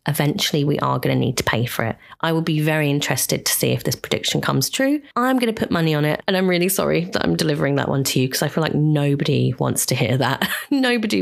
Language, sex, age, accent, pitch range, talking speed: English, female, 20-39, British, 145-180 Hz, 265 wpm